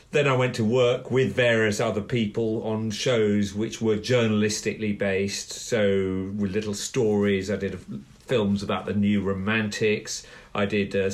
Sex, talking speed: male, 155 wpm